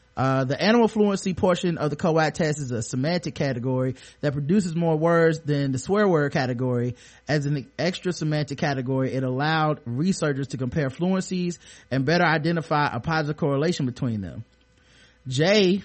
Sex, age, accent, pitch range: male, 30-49, American, 135-175 Hz